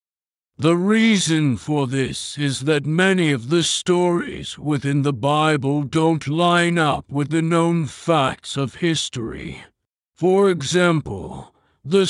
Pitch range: 135-170 Hz